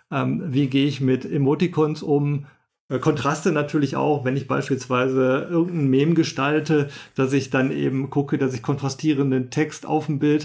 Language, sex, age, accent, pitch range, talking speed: German, male, 40-59, German, 140-170 Hz, 155 wpm